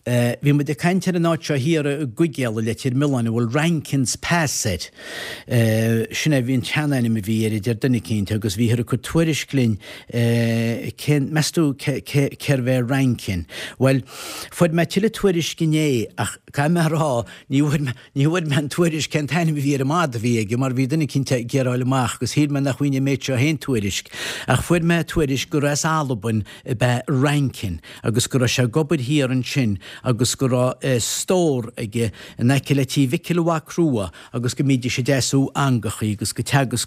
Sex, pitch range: male, 115-145 Hz